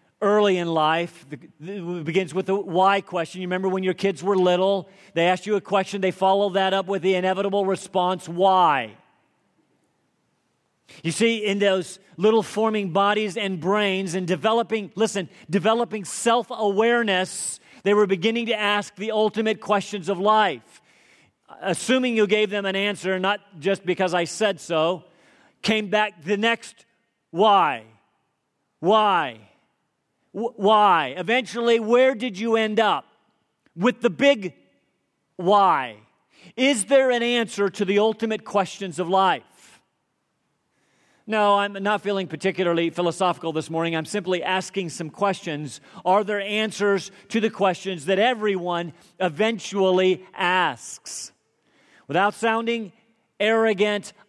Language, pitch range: English, 185-215 Hz